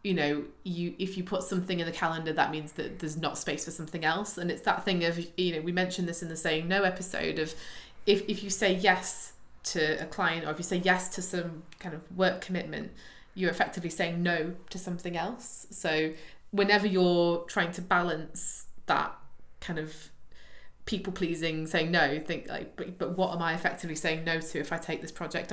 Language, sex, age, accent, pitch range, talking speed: English, female, 20-39, British, 160-190 Hz, 210 wpm